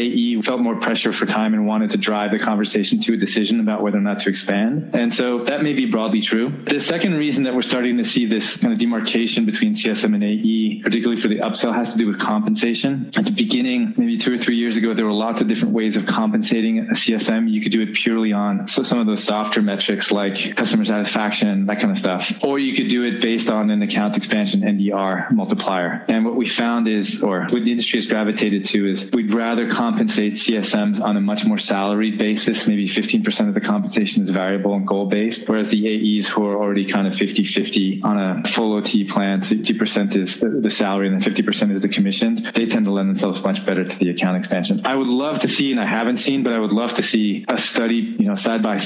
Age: 20-39